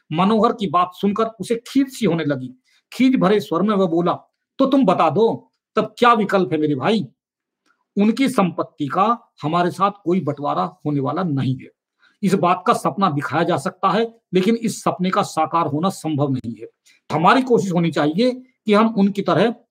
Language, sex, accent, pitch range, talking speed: Hindi, male, native, 165-225 Hz, 185 wpm